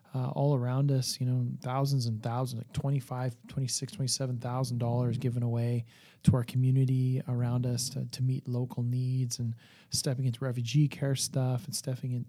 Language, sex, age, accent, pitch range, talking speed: English, male, 30-49, American, 120-140 Hz, 170 wpm